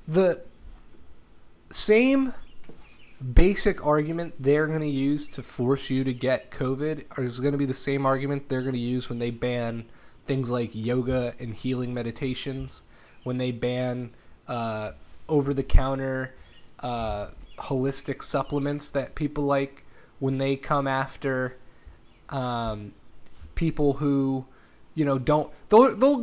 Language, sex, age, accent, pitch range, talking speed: English, male, 20-39, American, 125-155 Hz, 125 wpm